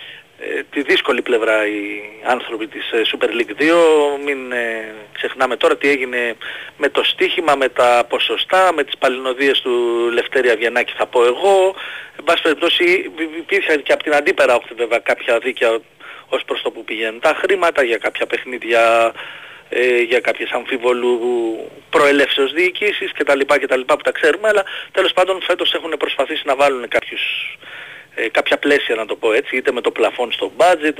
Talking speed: 165 wpm